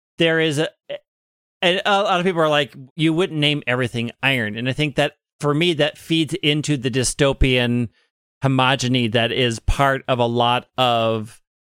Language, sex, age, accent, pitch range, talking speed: English, male, 40-59, American, 120-145 Hz, 175 wpm